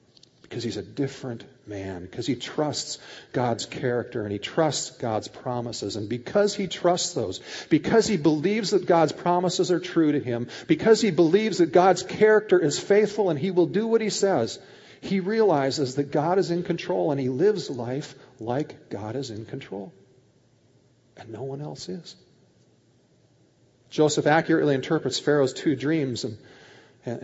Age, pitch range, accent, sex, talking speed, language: 40-59, 120-165 Hz, American, male, 165 wpm, English